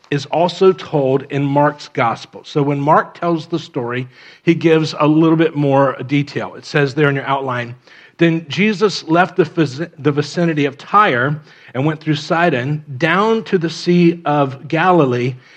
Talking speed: 160 wpm